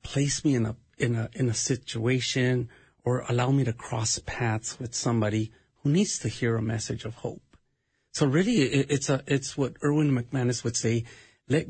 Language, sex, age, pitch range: English, male, 40-59, 115-150 Hz